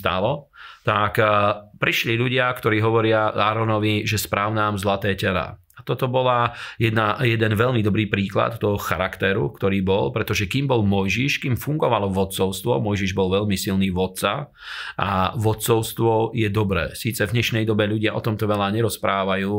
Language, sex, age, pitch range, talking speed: Slovak, male, 40-59, 105-115 Hz, 145 wpm